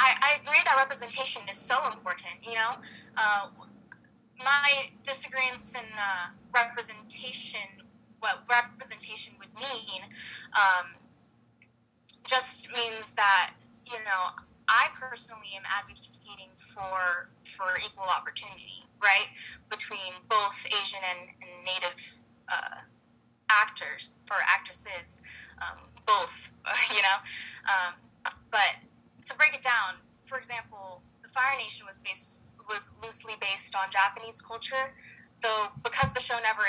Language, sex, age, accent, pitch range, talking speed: English, female, 10-29, American, 195-245 Hz, 120 wpm